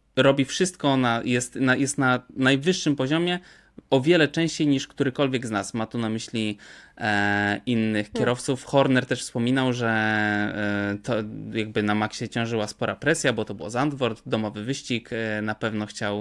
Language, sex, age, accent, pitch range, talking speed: Polish, male, 20-39, native, 110-135 Hz, 160 wpm